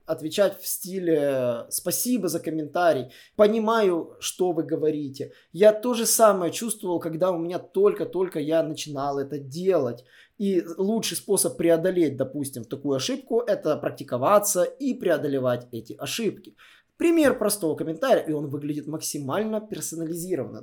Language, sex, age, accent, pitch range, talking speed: Russian, male, 20-39, native, 145-215 Hz, 130 wpm